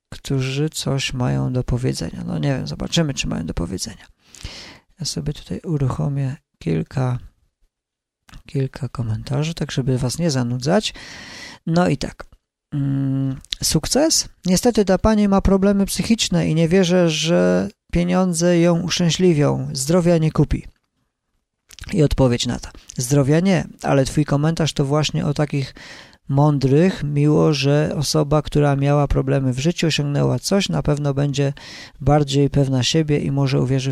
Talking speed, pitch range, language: 140 wpm, 135-160 Hz, Polish